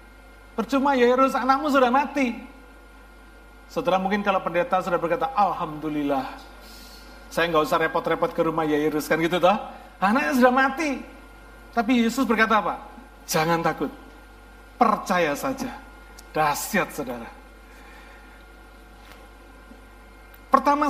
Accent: Indonesian